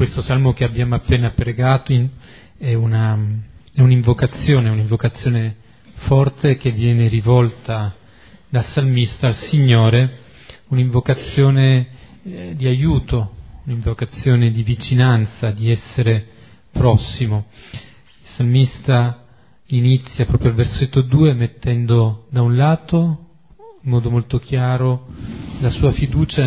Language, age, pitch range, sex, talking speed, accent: Italian, 40-59, 115-135 Hz, male, 105 wpm, native